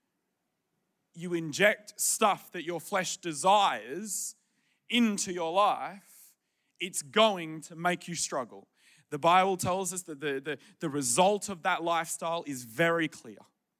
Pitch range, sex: 145-190 Hz, male